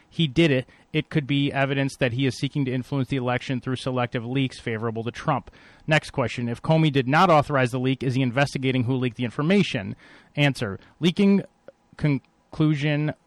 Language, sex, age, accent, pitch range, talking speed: English, male, 30-49, American, 125-145 Hz, 180 wpm